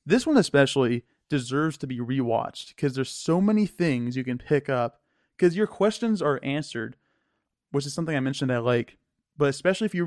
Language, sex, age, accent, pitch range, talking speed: English, male, 20-39, American, 125-155 Hz, 190 wpm